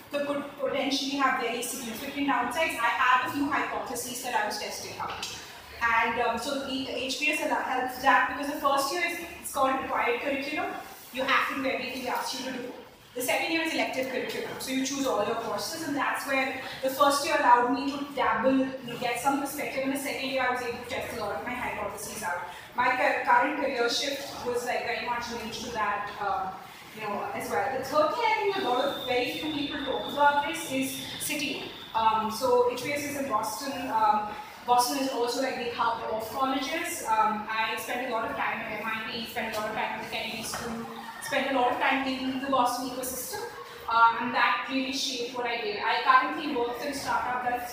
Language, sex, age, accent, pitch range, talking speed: English, female, 30-49, Indian, 230-275 Hz, 210 wpm